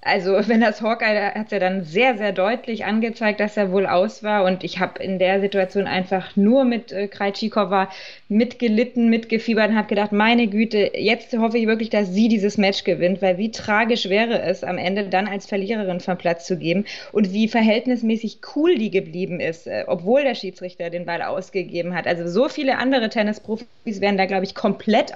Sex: female